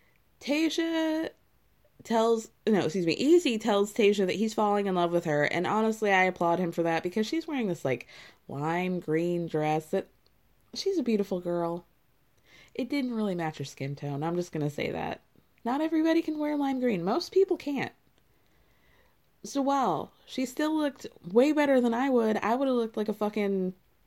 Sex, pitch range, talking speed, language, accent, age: female, 165-235 Hz, 180 wpm, English, American, 20-39